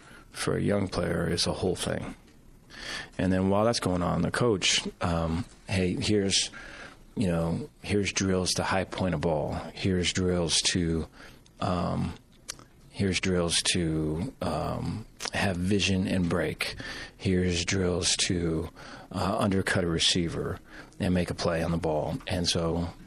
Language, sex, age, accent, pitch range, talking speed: English, male, 40-59, American, 85-95 Hz, 145 wpm